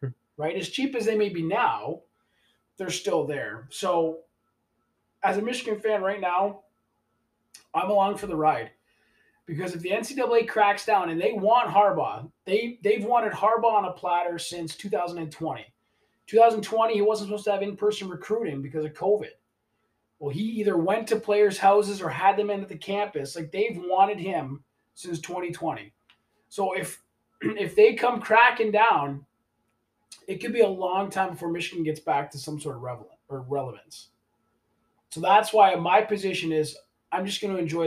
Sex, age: male, 20-39